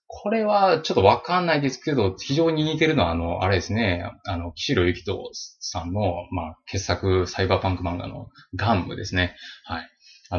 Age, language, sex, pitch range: 20-39, Japanese, male, 90-125 Hz